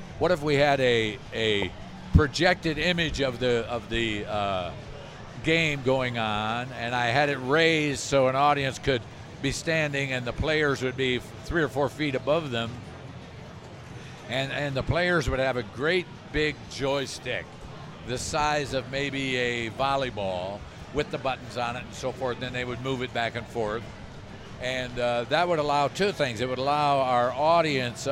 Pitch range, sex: 115-150 Hz, male